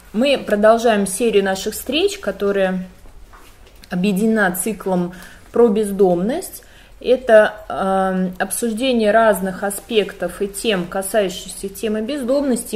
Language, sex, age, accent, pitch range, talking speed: Russian, female, 20-39, native, 180-220 Hz, 95 wpm